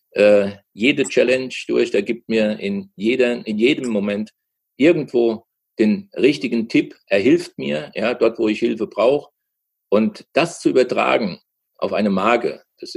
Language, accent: German, German